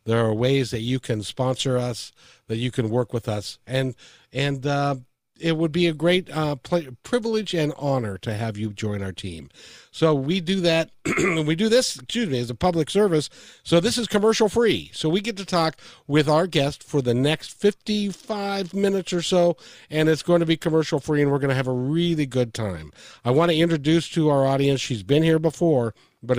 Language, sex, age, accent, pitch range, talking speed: English, male, 50-69, American, 110-165 Hz, 215 wpm